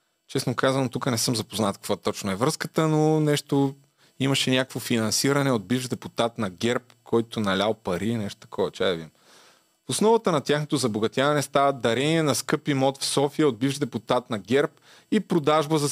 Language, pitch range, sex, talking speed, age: Bulgarian, 120-155 Hz, male, 175 wpm, 30-49